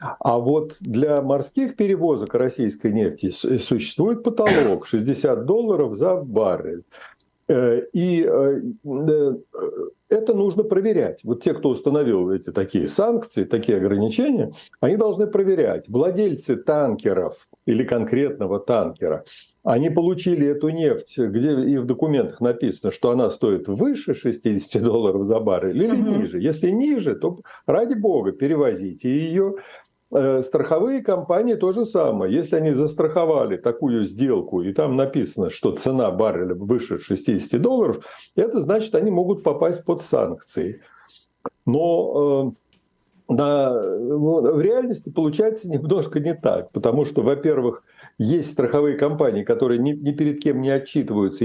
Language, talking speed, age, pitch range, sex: Russian, 125 wpm, 60-79, 135-215 Hz, male